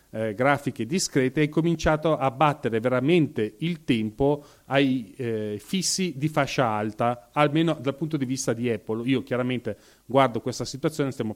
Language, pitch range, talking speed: Italian, 125-155 Hz, 155 wpm